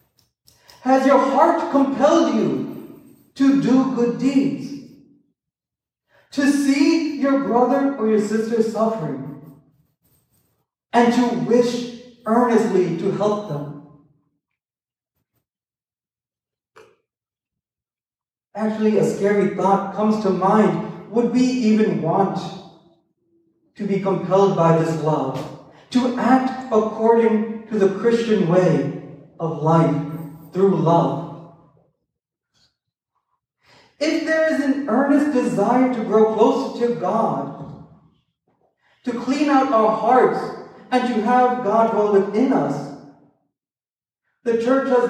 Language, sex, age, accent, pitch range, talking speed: English, male, 40-59, American, 185-255 Hz, 105 wpm